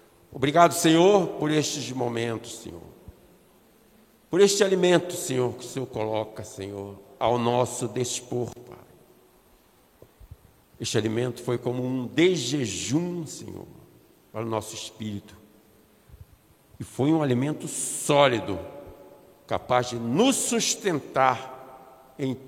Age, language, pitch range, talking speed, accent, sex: 60-79, Portuguese, 105-145 Hz, 105 wpm, Brazilian, male